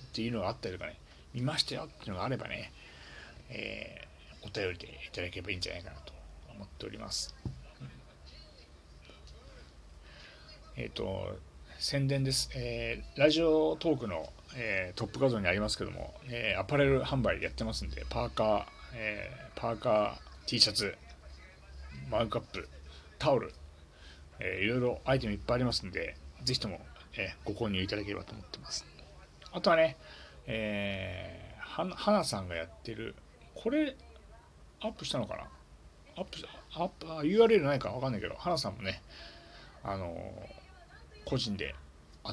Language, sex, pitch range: Japanese, male, 70-120 Hz